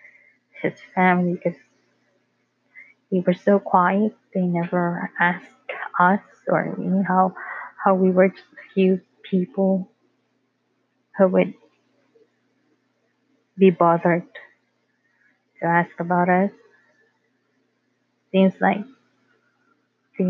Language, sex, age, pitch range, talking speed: English, female, 20-39, 175-195 Hz, 100 wpm